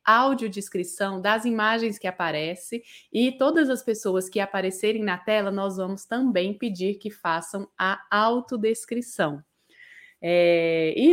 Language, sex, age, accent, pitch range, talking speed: Portuguese, female, 20-39, Brazilian, 185-230 Hz, 120 wpm